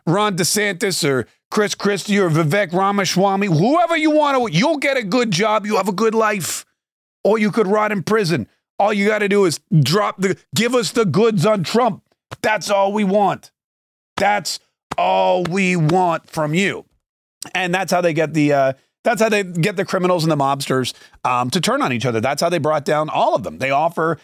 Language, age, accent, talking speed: English, 30-49, American, 210 wpm